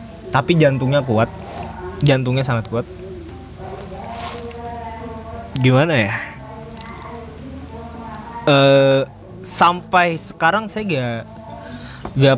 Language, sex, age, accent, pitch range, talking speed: Indonesian, male, 20-39, native, 115-140 Hz, 70 wpm